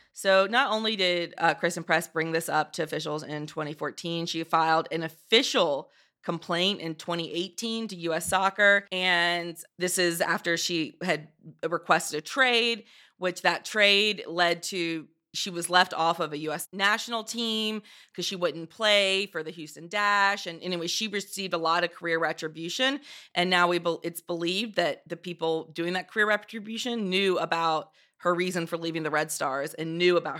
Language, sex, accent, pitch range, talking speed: English, female, American, 160-200 Hz, 170 wpm